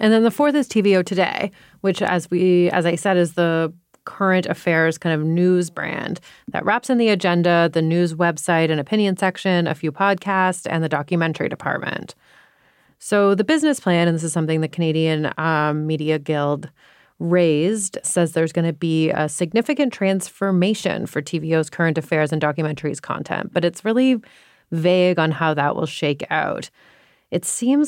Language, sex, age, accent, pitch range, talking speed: English, female, 30-49, American, 170-215 Hz, 170 wpm